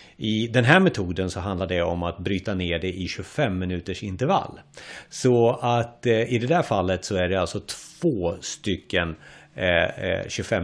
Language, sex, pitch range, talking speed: Swedish, male, 95-130 Hz, 165 wpm